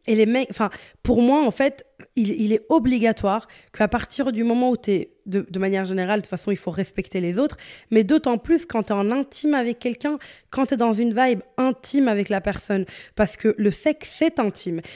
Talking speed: 230 wpm